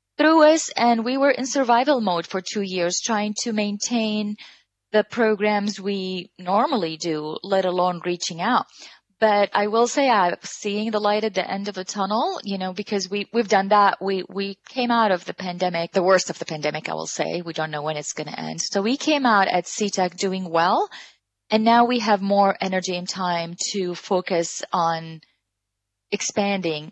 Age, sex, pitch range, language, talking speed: 30-49, female, 175-220 Hz, English, 190 wpm